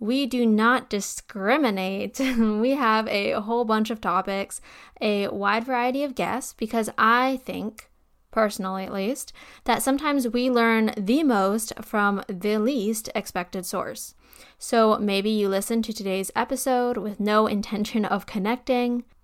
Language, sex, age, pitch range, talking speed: English, female, 10-29, 200-240 Hz, 140 wpm